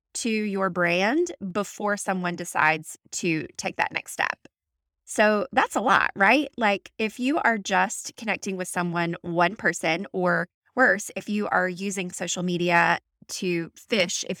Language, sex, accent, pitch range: English, female, American, 175-210 Hz